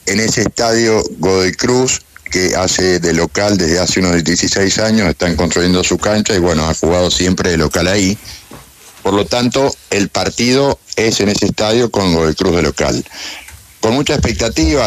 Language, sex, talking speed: Spanish, male, 175 wpm